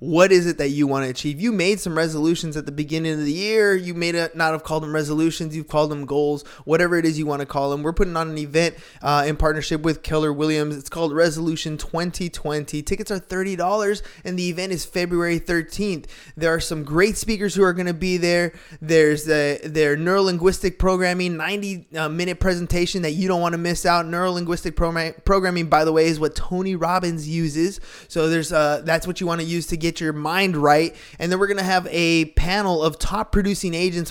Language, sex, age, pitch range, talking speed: English, male, 20-39, 155-185 Hz, 220 wpm